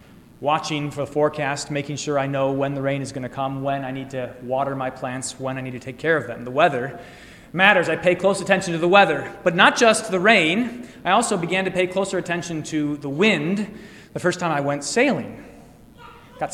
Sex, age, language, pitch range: male, 30-49, English, 135-170 Hz